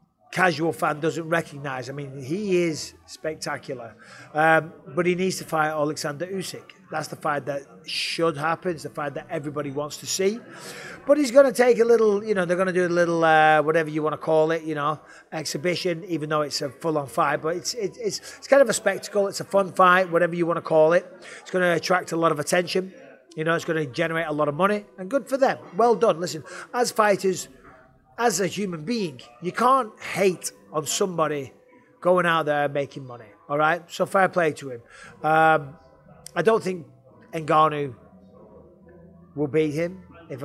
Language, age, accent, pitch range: English, 30-49, British, 155-185 Hz